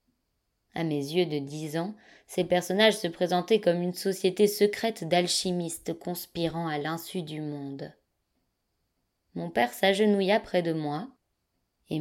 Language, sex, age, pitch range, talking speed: French, female, 20-39, 150-185 Hz, 135 wpm